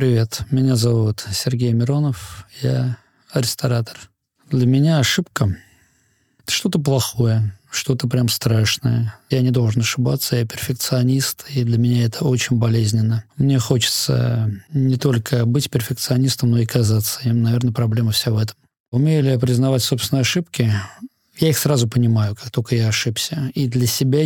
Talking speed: 150 wpm